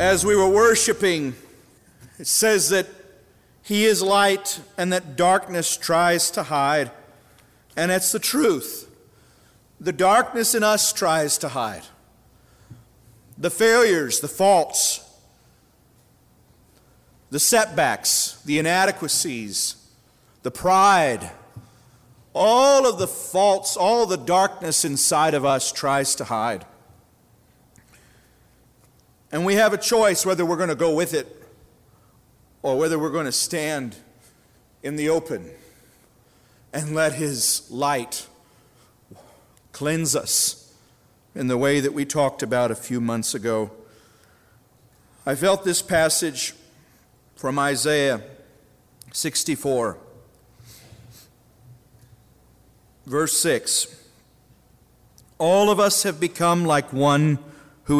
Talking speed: 110 wpm